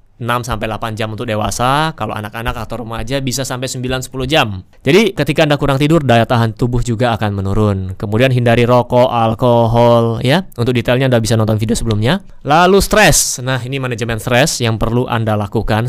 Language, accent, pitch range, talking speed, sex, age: Indonesian, native, 115-145 Hz, 175 wpm, male, 20-39